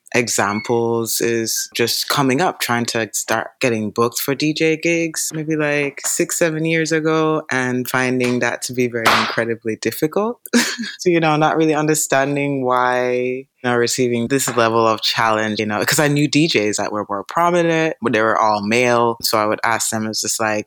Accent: American